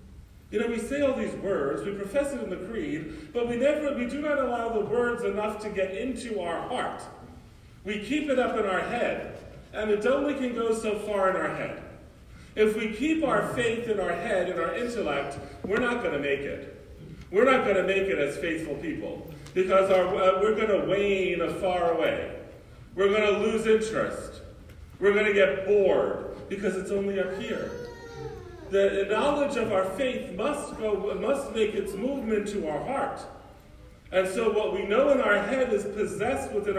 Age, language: 40-59, English